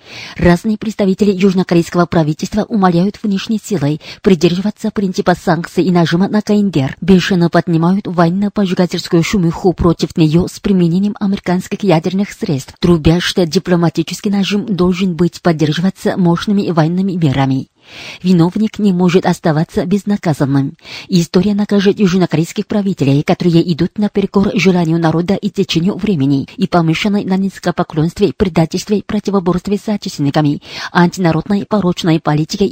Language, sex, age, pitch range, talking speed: Russian, female, 30-49, 170-200 Hz, 115 wpm